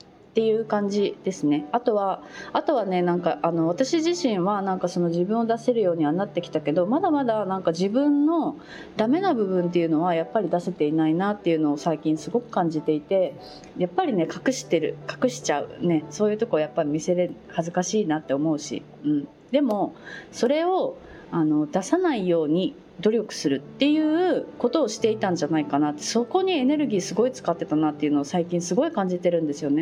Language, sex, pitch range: Japanese, female, 165-260 Hz